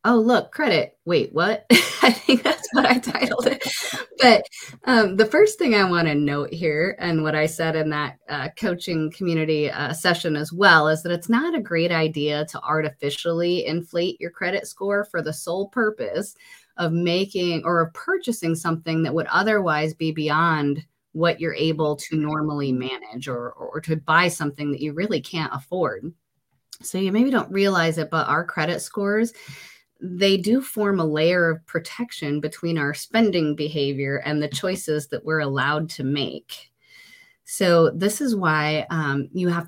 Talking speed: 170 wpm